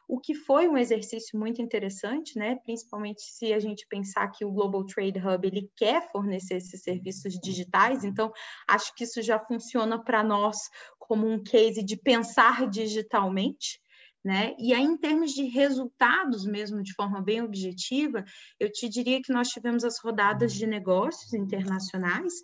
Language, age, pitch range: Portuguese, 20-39, 195-230 Hz